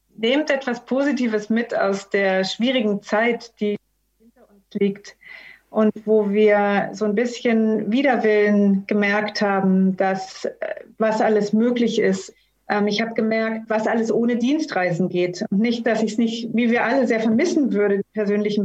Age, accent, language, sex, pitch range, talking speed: 30-49, German, German, female, 205-235 Hz, 160 wpm